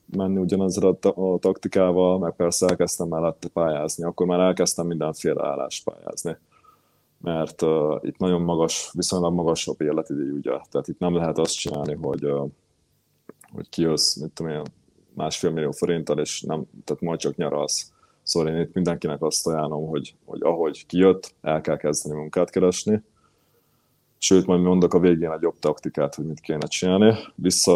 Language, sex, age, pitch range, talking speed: Hungarian, male, 20-39, 80-95 Hz, 165 wpm